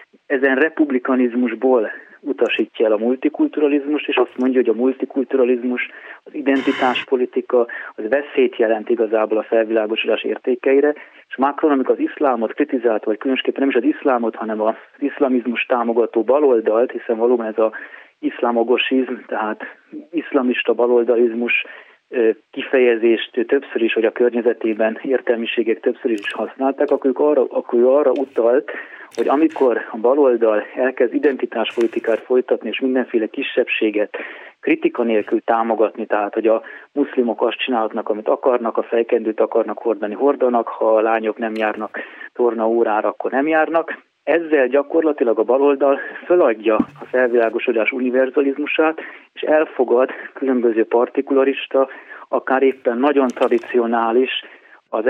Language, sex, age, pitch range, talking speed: Hungarian, male, 30-49, 115-145 Hz, 120 wpm